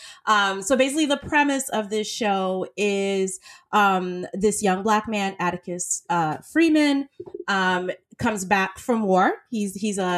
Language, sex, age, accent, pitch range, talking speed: English, female, 30-49, American, 175-220 Hz, 145 wpm